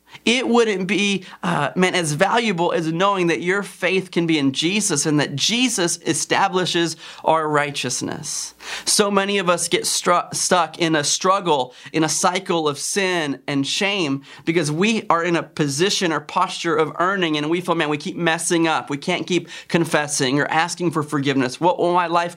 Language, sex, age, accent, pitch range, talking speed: English, male, 30-49, American, 150-185 Hz, 185 wpm